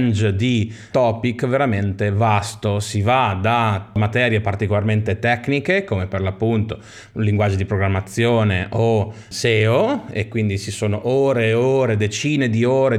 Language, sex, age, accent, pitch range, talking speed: Italian, male, 30-49, native, 105-125 Hz, 130 wpm